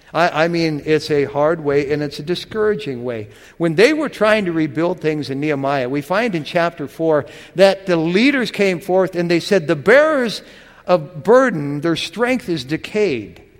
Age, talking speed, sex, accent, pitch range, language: 60-79, 180 wpm, male, American, 145-190 Hz, English